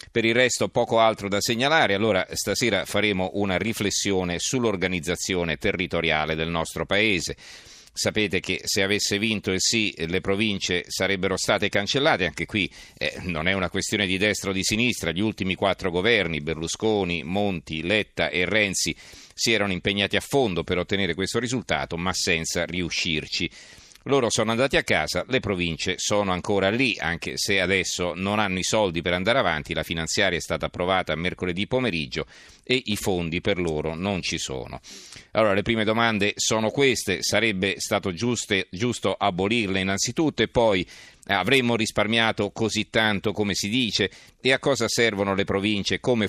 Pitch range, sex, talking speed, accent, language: 90-110 Hz, male, 160 wpm, native, Italian